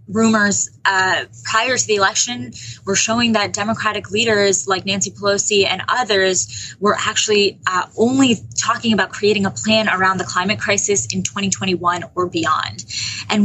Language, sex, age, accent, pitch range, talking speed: English, female, 20-39, American, 185-220 Hz, 150 wpm